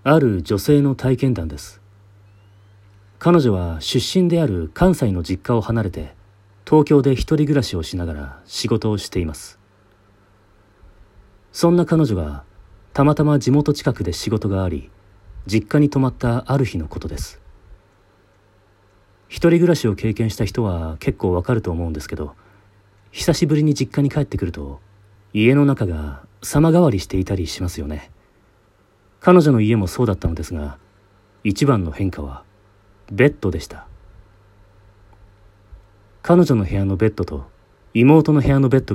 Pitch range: 95-125 Hz